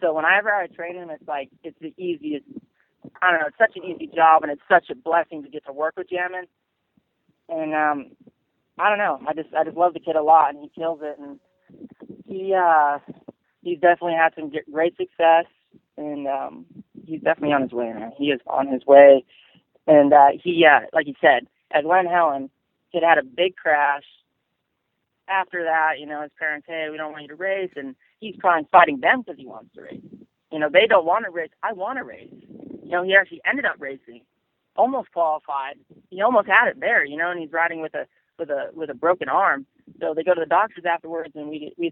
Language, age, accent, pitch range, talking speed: English, 30-49, American, 145-175 Hz, 220 wpm